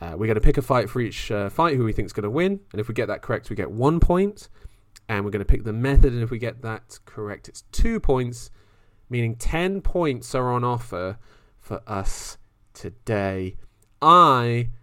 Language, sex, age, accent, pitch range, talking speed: English, male, 30-49, British, 105-120 Hz, 220 wpm